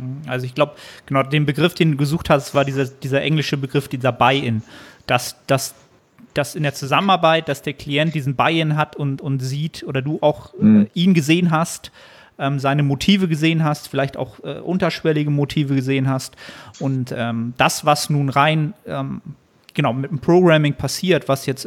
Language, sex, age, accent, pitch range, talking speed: German, male, 30-49, German, 135-155 Hz, 175 wpm